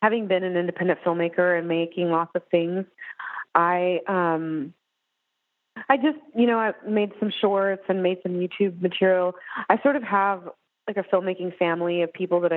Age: 30-49